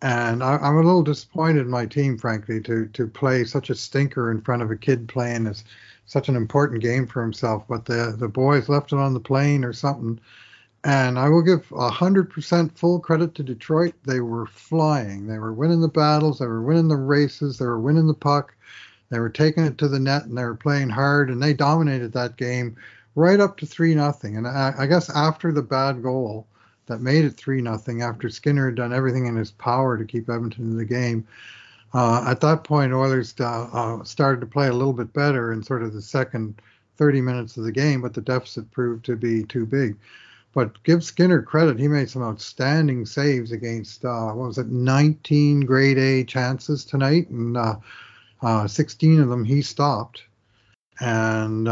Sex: male